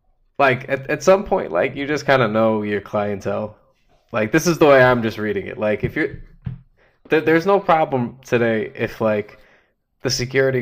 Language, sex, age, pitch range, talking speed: English, male, 20-39, 110-150 Hz, 190 wpm